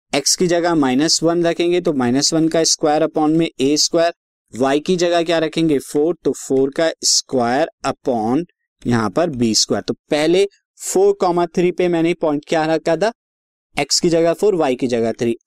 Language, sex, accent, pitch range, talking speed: Hindi, male, native, 130-170 Hz, 180 wpm